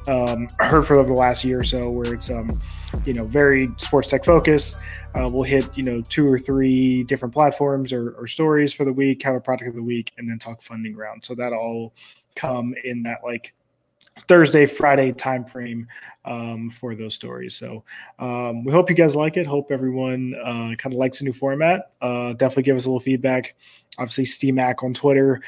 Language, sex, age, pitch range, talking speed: English, male, 20-39, 120-140 Hz, 205 wpm